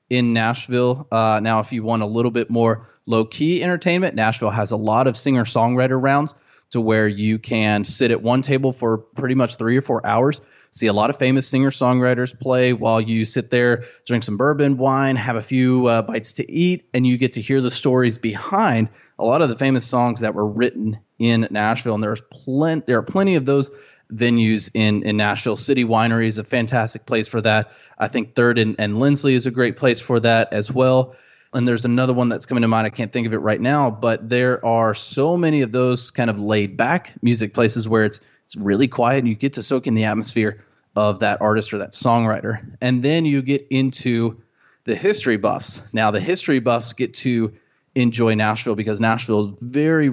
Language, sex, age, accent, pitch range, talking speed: English, male, 20-39, American, 110-130 Hz, 210 wpm